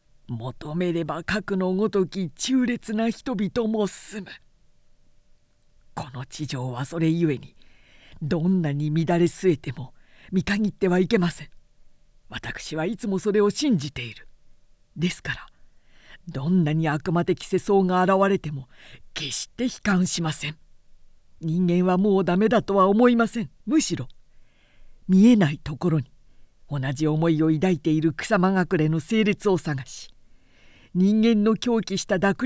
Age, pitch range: 50-69, 155-215 Hz